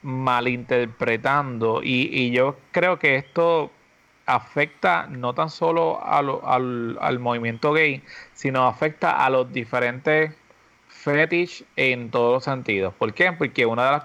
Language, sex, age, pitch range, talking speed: Spanish, male, 30-49, 120-155 Hz, 130 wpm